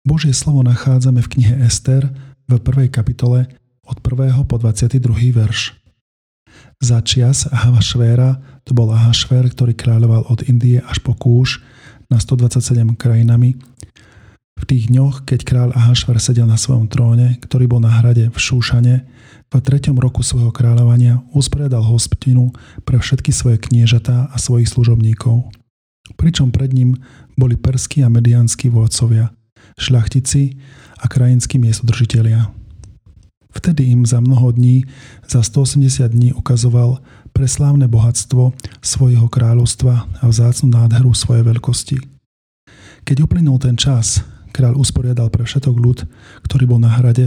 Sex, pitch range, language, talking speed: male, 115-130 Hz, Slovak, 130 wpm